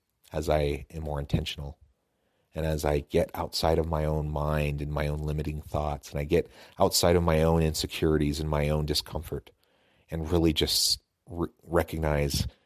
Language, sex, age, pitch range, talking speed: English, male, 30-49, 75-90 Hz, 165 wpm